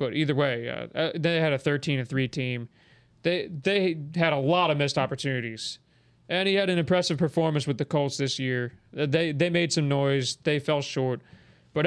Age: 20-39